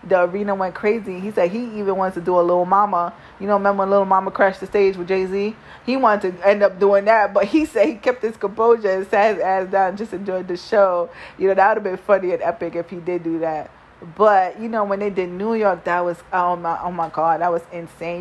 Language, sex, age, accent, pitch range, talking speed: English, female, 20-39, American, 175-205 Hz, 265 wpm